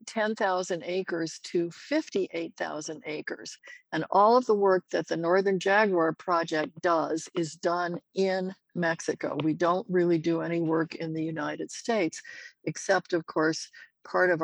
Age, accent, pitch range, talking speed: 60-79, American, 165-195 Hz, 145 wpm